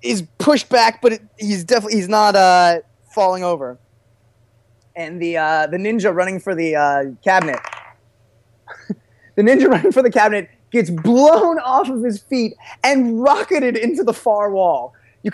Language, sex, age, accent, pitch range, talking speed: English, male, 20-39, American, 145-205 Hz, 160 wpm